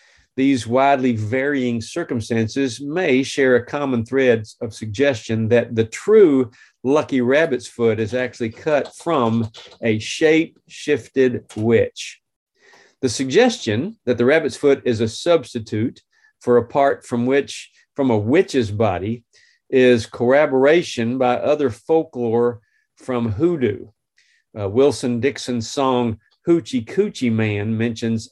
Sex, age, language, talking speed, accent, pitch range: male, 40-59, English, 125 wpm, American, 115-145 Hz